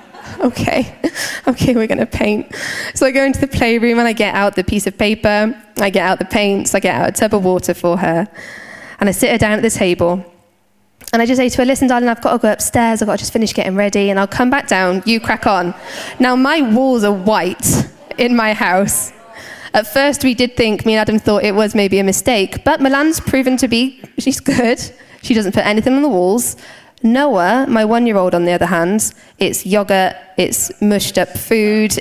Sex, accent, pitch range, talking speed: female, British, 185-260 Hz, 225 wpm